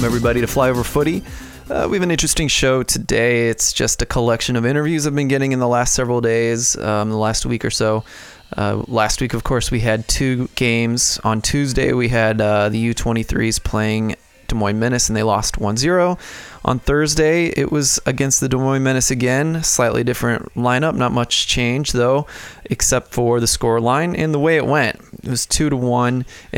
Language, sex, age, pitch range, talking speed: English, male, 20-39, 110-130 Hz, 195 wpm